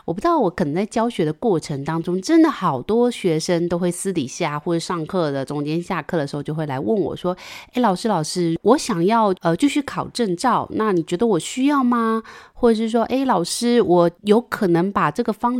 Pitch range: 165-230 Hz